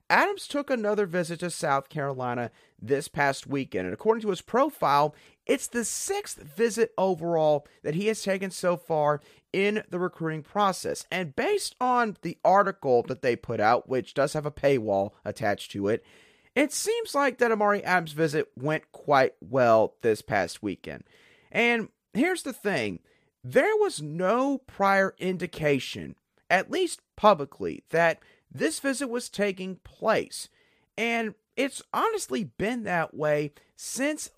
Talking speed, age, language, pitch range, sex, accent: 150 wpm, 30-49, English, 150-225 Hz, male, American